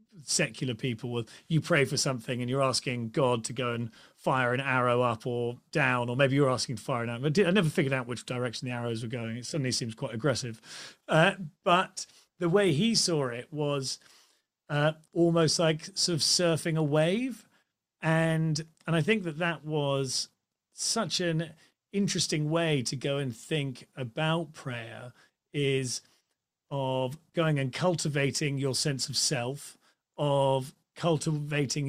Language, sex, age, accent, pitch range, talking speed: English, male, 40-59, British, 130-165 Hz, 165 wpm